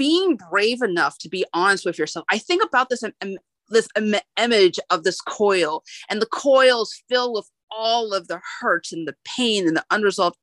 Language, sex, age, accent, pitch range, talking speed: English, female, 30-49, American, 195-265 Hz, 185 wpm